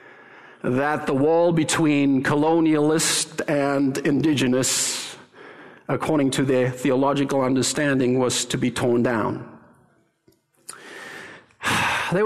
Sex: male